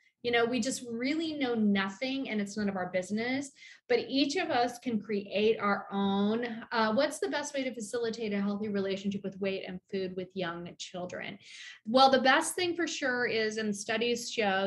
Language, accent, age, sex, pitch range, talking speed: English, American, 30-49, female, 205-240 Hz, 195 wpm